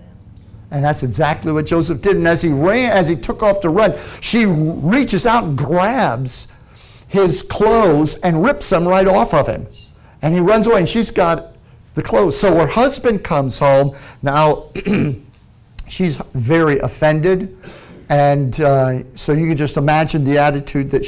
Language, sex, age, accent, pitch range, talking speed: English, male, 50-69, American, 130-190 Hz, 165 wpm